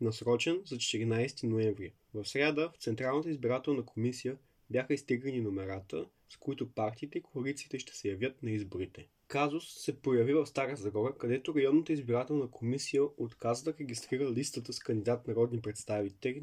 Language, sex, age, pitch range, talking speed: Bulgarian, male, 20-39, 110-140 Hz, 150 wpm